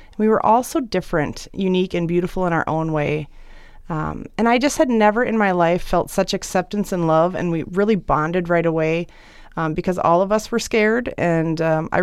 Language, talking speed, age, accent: English, 210 wpm, 30-49, American